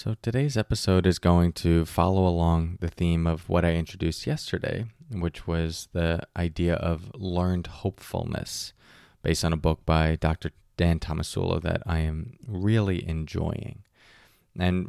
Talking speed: 145 wpm